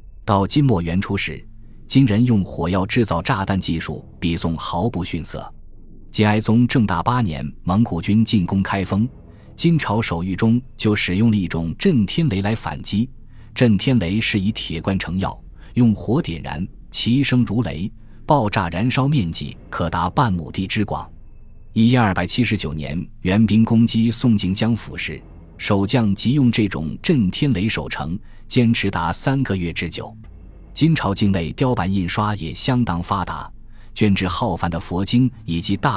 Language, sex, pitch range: Chinese, male, 85-115 Hz